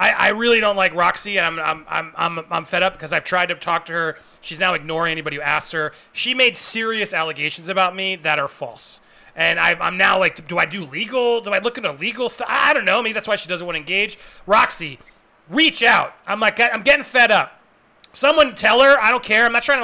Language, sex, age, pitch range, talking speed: English, male, 30-49, 200-285 Hz, 240 wpm